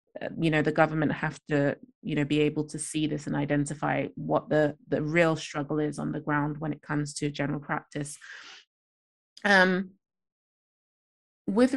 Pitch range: 150-175 Hz